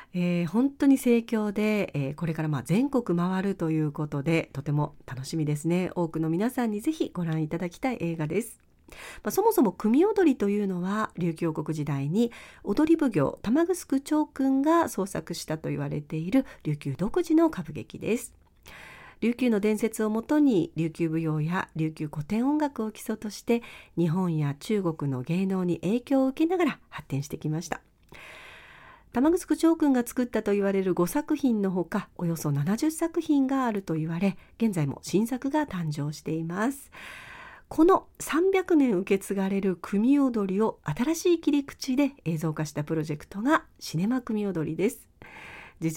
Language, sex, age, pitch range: Japanese, female, 40-59, 165-265 Hz